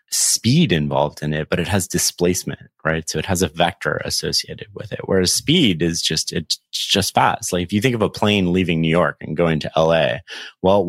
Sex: male